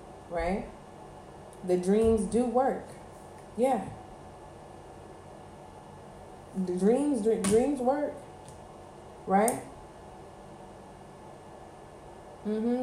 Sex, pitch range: female, 195-240 Hz